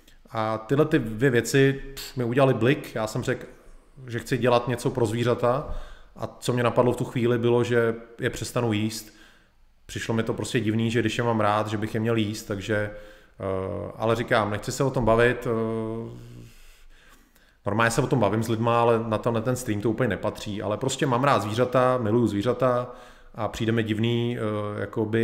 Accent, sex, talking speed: native, male, 185 wpm